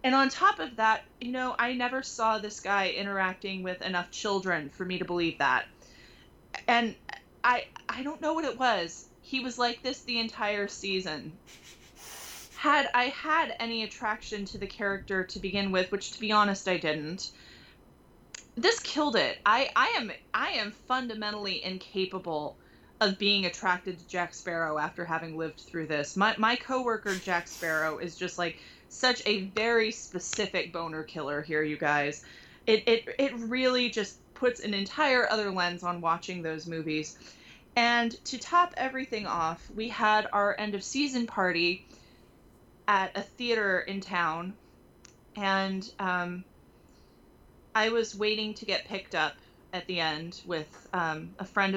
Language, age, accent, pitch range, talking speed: English, 20-39, American, 175-230 Hz, 160 wpm